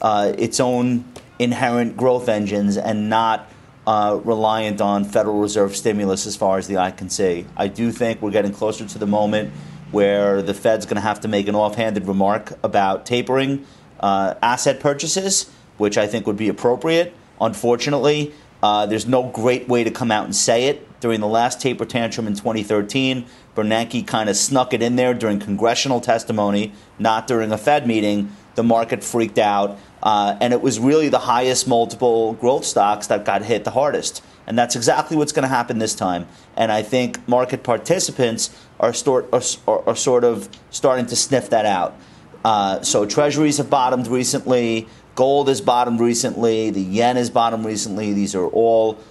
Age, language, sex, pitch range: 30-49, English, male, 105-125 Hz